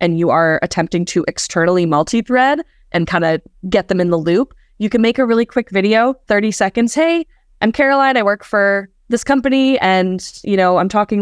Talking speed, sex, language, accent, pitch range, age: 200 wpm, female, English, American, 175-230 Hz, 20-39